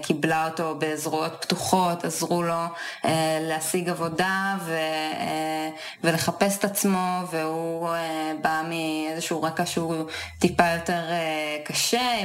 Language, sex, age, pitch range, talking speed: Hebrew, female, 20-39, 155-175 Hz, 120 wpm